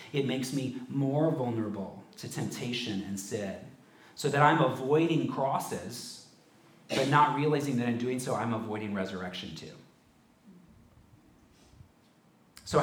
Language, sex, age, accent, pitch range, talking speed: English, male, 40-59, American, 115-150 Hz, 120 wpm